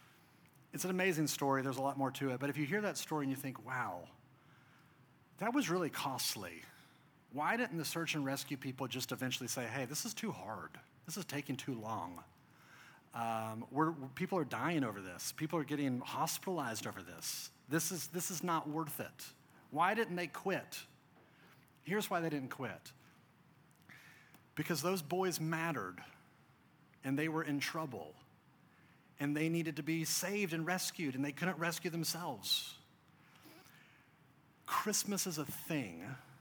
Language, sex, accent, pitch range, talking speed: English, male, American, 135-170 Hz, 165 wpm